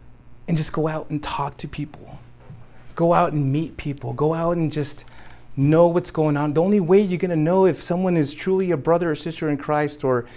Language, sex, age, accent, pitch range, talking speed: English, male, 30-49, American, 120-155 Hz, 225 wpm